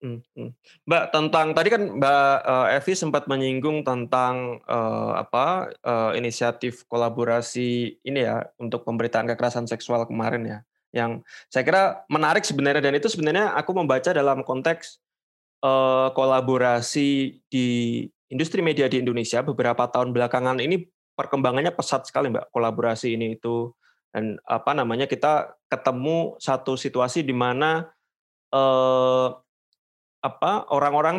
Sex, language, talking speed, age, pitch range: male, Indonesian, 125 wpm, 20-39, 120-145 Hz